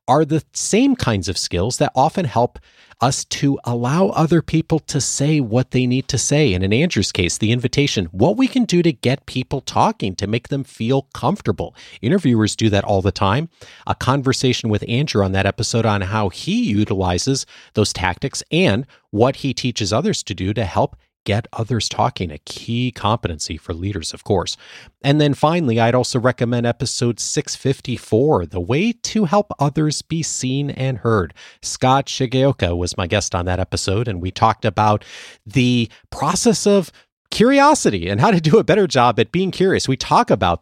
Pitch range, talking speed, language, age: 95-135 Hz, 185 wpm, English, 40-59